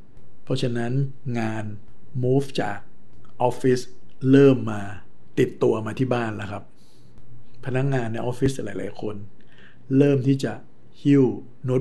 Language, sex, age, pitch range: Thai, male, 60-79, 110-130 Hz